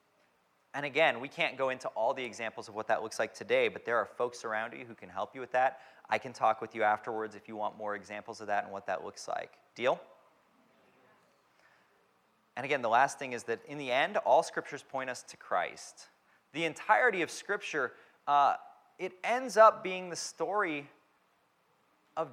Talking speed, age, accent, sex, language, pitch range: 200 wpm, 30-49, American, male, English, 130-190 Hz